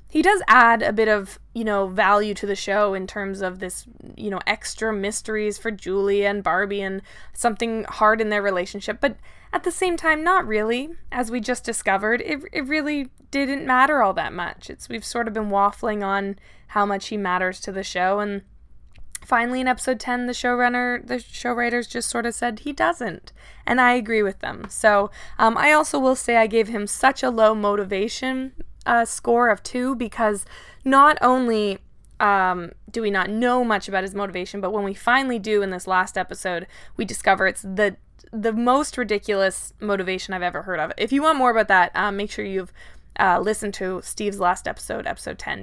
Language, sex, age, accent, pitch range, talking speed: English, female, 20-39, American, 195-245 Hz, 200 wpm